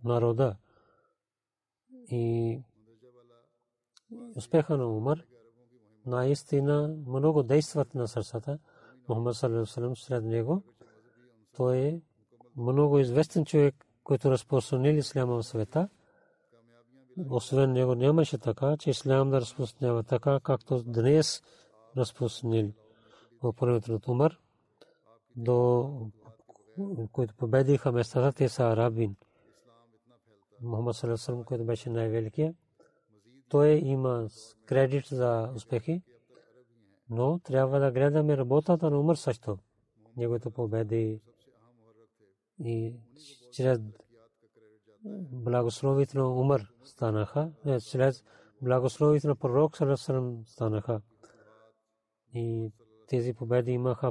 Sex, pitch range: male, 115-140 Hz